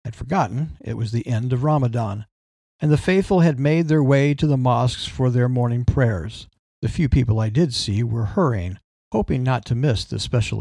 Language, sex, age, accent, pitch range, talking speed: English, male, 50-69, American, 110-140 Hz, 205 wpm